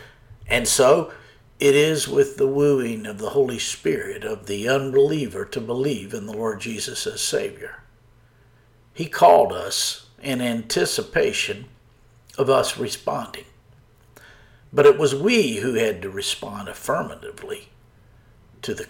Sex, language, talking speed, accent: male, English, 130 wpm, American